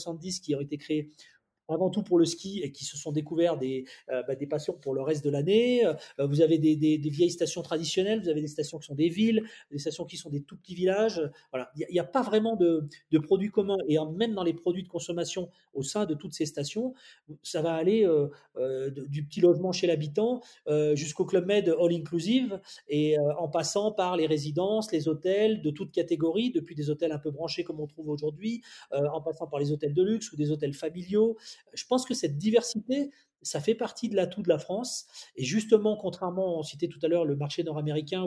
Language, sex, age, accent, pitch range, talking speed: French, male, 30-49, French, 155-205 Hz, 230 wpm